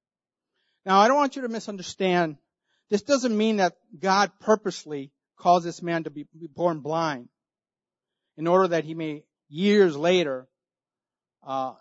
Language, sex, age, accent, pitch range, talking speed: English, male, 50-69, American, 155-195 Hz, 140 wpm